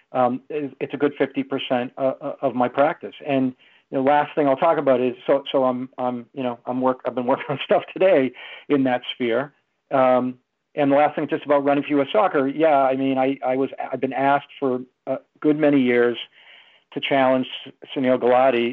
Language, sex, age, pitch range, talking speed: English, male, 50-69, 120-135 Hz, 200 wpm